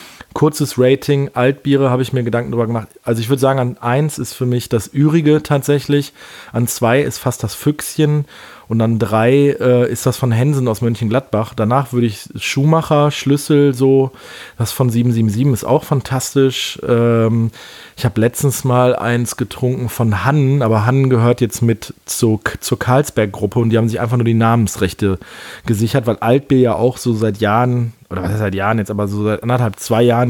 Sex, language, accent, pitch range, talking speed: male, German, German, 110-135 Hz, 185 wpm